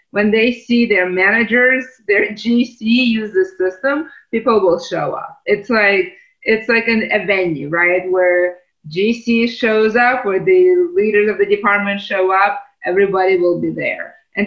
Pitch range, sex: 180-230 Hz, female